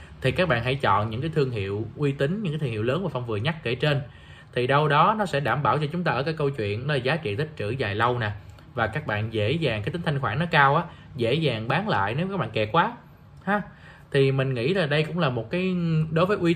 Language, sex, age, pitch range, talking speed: Vietnamese, male, 20-39, 115-155 Hz, 285 wpm